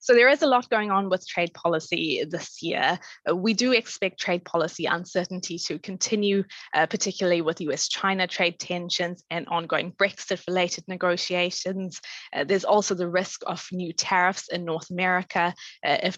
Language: English